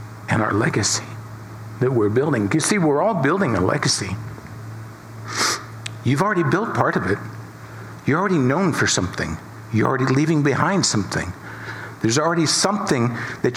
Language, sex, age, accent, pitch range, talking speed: English, male, 60-79, American, 110-130 Hz, 145 wpm